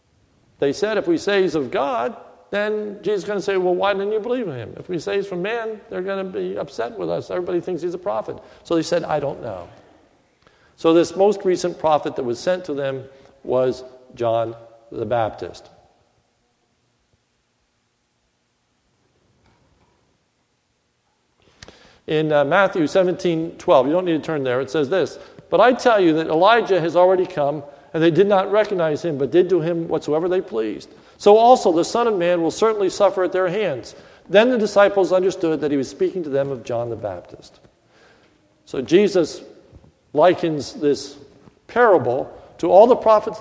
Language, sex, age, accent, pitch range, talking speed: English, male, 50-69, American, 140-195 Hz, 180 wpm